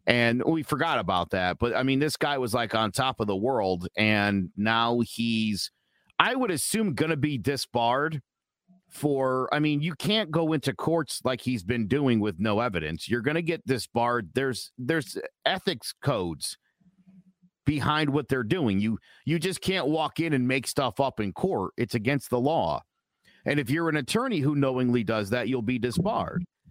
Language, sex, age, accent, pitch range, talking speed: English, male, 50-69, American, 125-180 Hz, 185 wpm